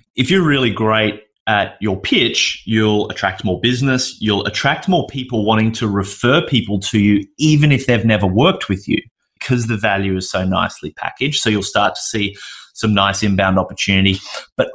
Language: English